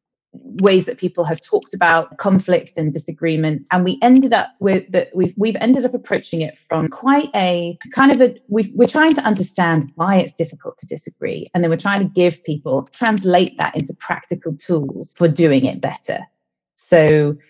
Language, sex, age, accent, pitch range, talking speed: English, female, 20-39, British, 155-195 Hz, 185 wpm